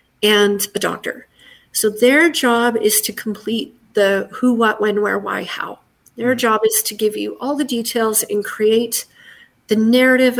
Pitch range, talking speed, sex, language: 205-245 Hz, 165 wpm, female, English